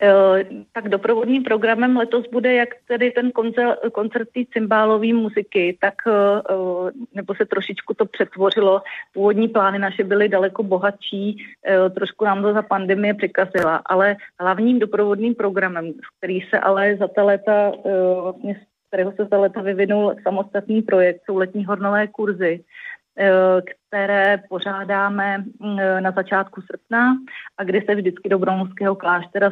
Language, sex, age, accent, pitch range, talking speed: Czech, female, 30-49, native, 190-210 Hz, 140 wpm